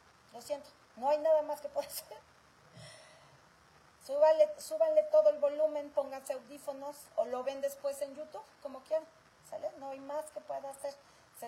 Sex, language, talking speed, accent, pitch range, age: female, Spanish, 160 wpm, Mexican, 245-315 Hz, 40-59